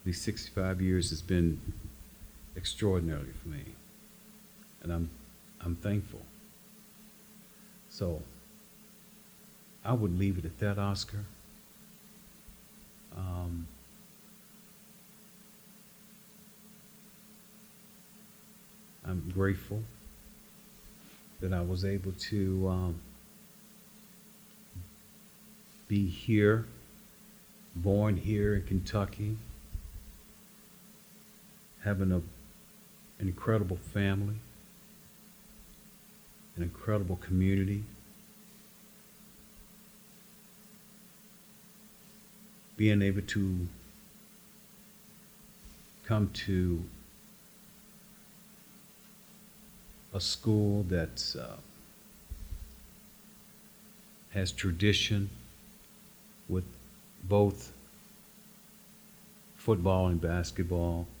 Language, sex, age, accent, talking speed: English, male, 50-69, American, 55 wpm